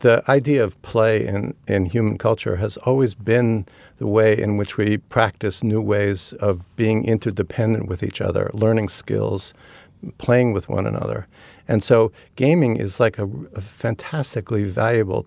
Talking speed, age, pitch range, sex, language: 155 wpm, 60-79, 105-120 Hz, male, English